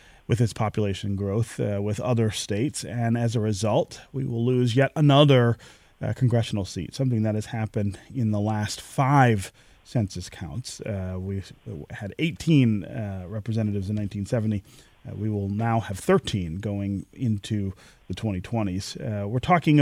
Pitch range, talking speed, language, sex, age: 100-125 Hz, 155 wpm, English, male, 30-49